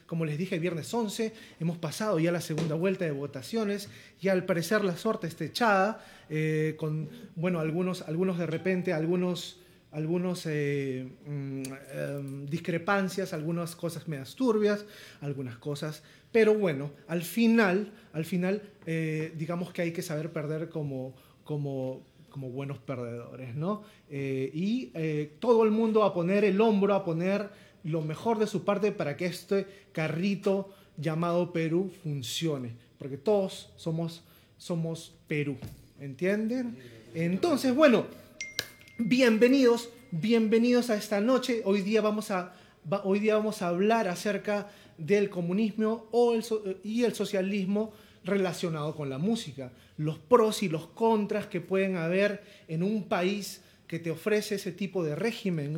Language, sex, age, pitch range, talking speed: Spanish, male, 30-49, 155-210 Hz, 140 wpm